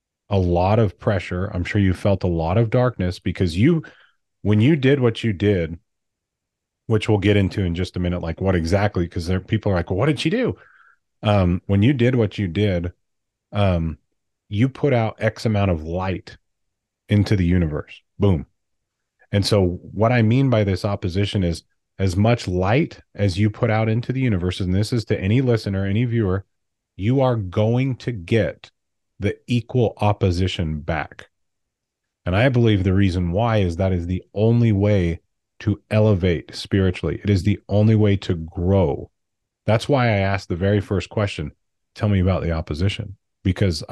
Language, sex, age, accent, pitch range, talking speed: English, male, 30-49, American, 90-110 Hz, 180 wpm